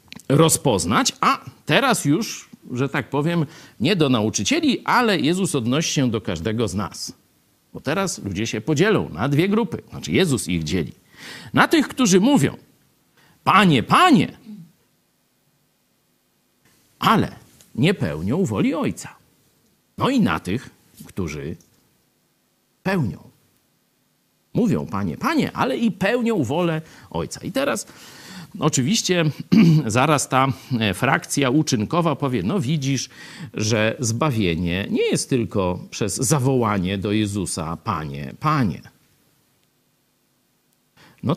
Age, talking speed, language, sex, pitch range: 50-69, 110 wpm, Polish, male, 110-160 Hz